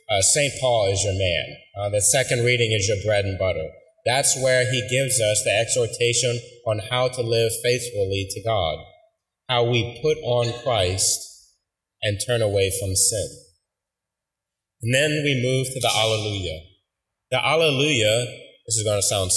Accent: American